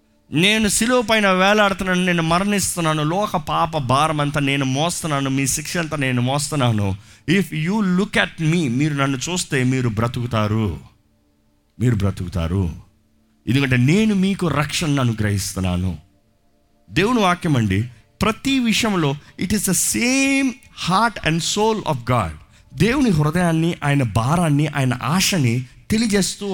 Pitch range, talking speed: 115-180 Hz, 120 wpm